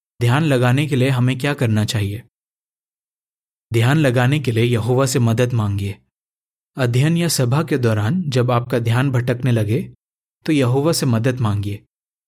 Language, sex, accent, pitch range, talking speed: Hindi, male, native, 115-140 Hz, 150 wpm